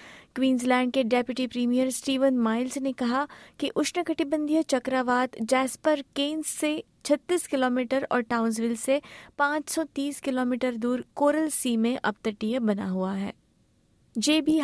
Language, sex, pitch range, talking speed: Hindi, female, 220-265 Hz, 125 wpm